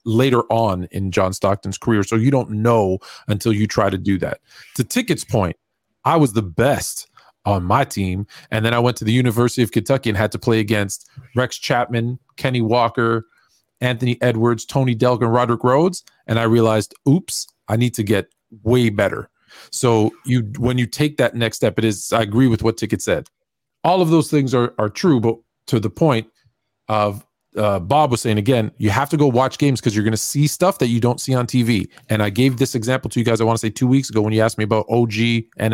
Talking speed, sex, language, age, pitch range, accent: 225 wpm, male, English, 40-59, 110-130 Hz, American